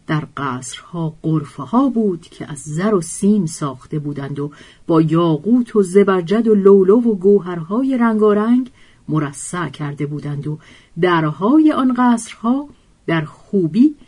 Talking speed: 135 wpm